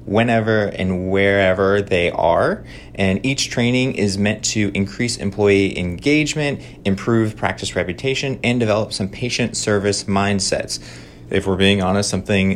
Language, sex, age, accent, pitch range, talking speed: English, male, 30-49, American, 95-115 Hz, 135 wpm